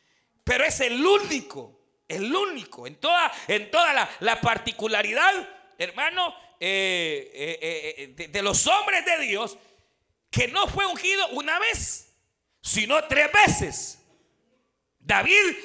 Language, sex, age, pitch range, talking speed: Spanish, male, 50-69, 240-390 Hz, 125 wpm